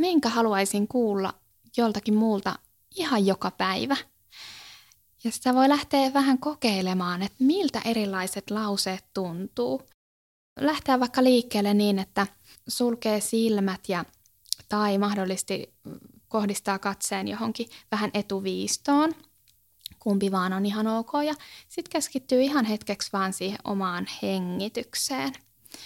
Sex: female